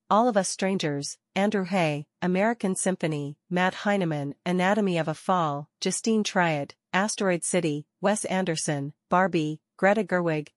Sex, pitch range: female, 155-200 Hz